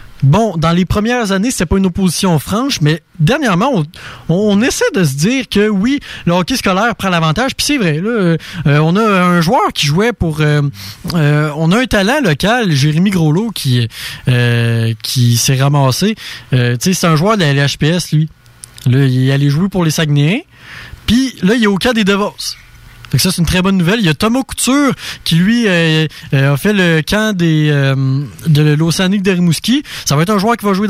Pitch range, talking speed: 150-200 Hz, 215 wpm